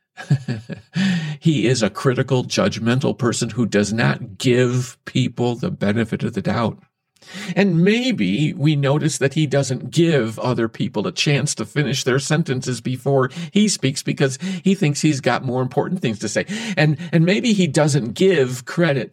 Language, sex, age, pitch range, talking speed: English, male, 50-69, 125-185 Hz, 165 wpm